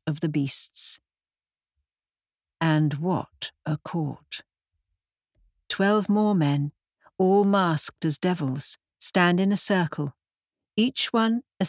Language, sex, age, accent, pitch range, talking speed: English, female, 60-79, British, 145-195 Hz, 110 wpm